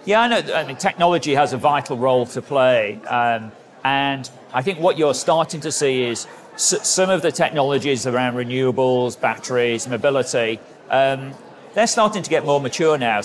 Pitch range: 115-135 Hz